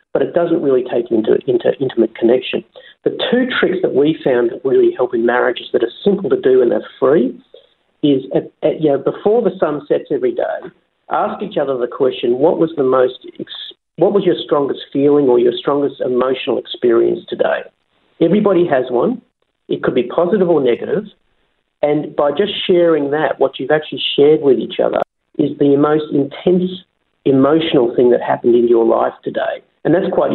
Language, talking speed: English, 185 wpm